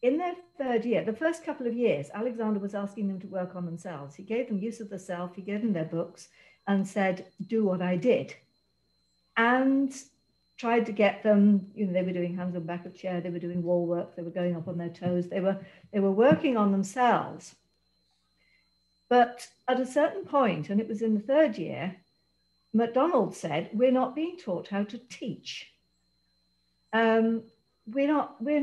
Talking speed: 195 wpm